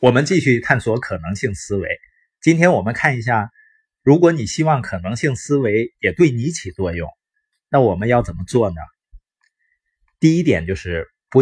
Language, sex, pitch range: Chinese, male, 105-160 Hz